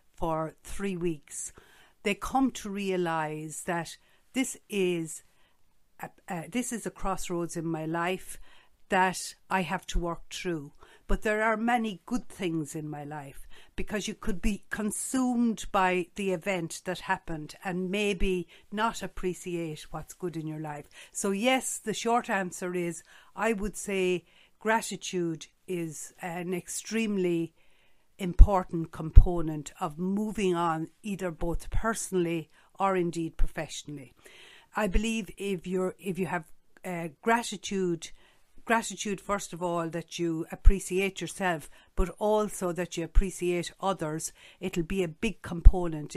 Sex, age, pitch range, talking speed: female, 60-79, 165-200 Hz, 135 wpm